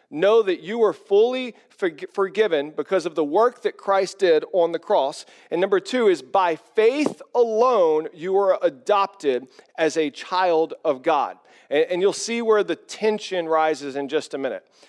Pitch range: 170-230 Hz